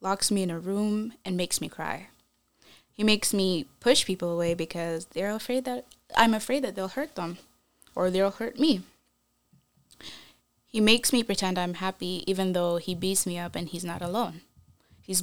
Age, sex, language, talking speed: 20-39, female, English, 180 wpm